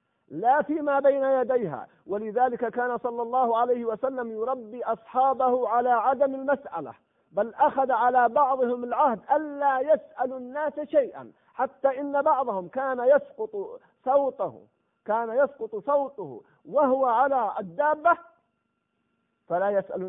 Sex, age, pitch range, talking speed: male, 50-69, 195-270 Hz, 115 wpm